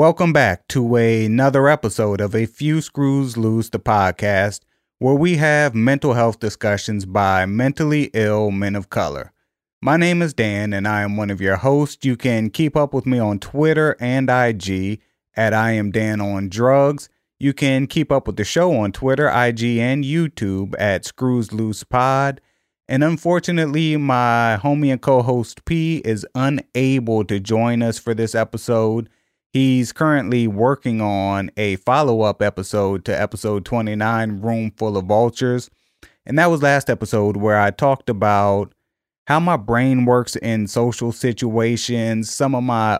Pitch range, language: 105-130 Hz, English